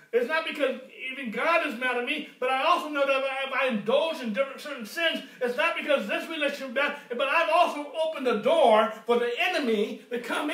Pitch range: 210-275 Hz